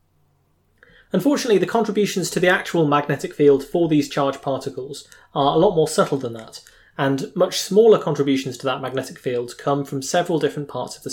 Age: 20-39